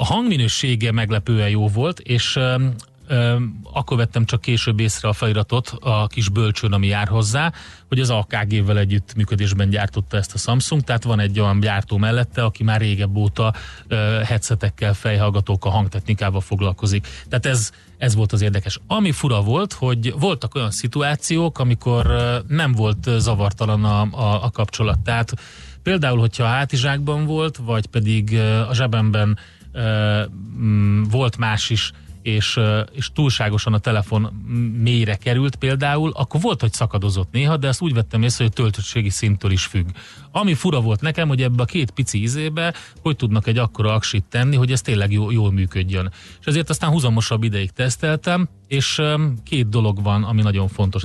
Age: 30-49